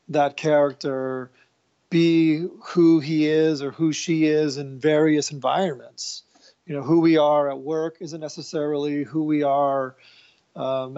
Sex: male